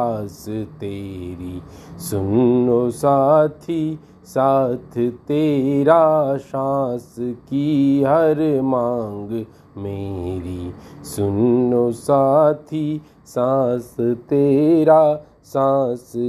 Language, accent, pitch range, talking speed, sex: Hindi, native, 115-145 Hz, 55 wpm, male